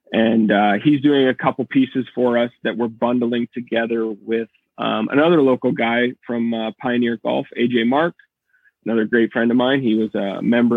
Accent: American